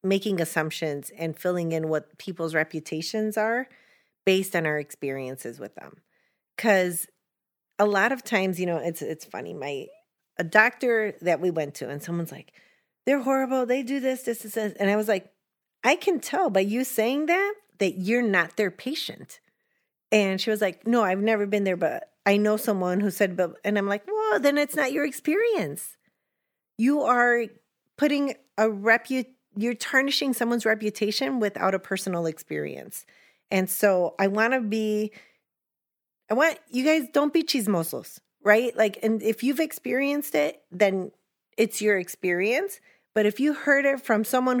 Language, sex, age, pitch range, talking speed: English, female, 30-49, 180-245 Hz, 170 wpm